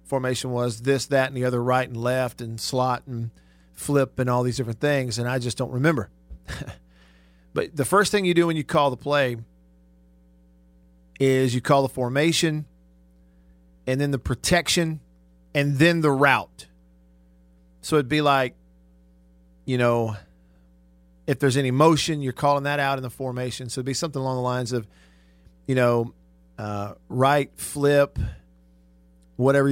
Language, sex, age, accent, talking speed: English, male, 40-59, American, 160 wpm